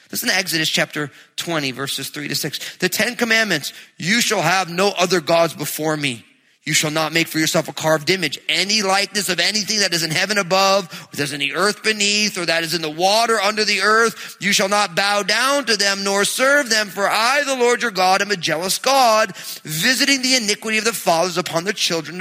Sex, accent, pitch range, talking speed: male, American, 160-215 Hz, 220 wpm